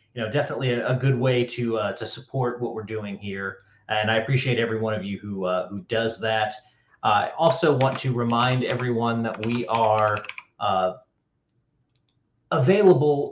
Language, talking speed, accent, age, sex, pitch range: English, 175 wpm, American, 30-49, male, 110-135 Hz